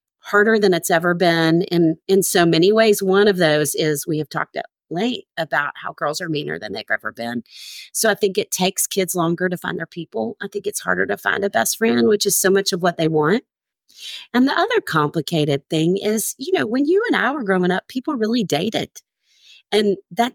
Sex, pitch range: female, 160-220 Hz